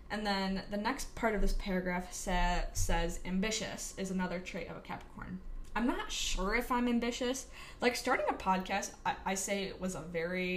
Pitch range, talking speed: 180-220 Hz, 195 wpm